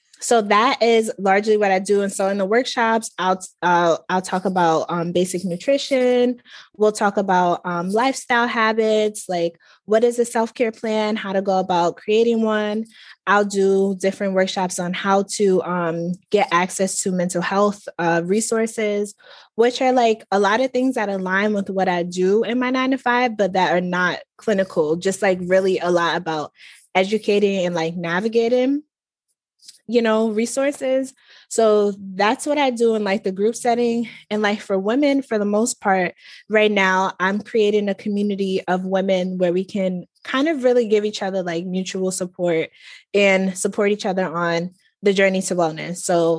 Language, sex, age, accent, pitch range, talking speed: English, female, 20-39, American, 185-220 Hz, 175 wpm